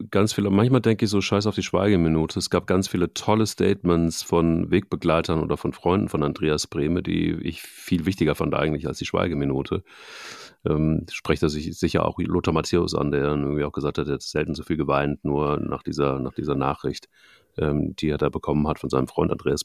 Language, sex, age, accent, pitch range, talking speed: German, male, 40-59, German, 80-95 Hz, 210 wpm